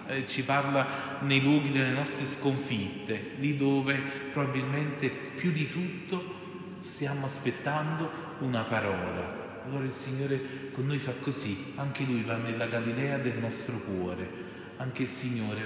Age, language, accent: 40-59, Italian, native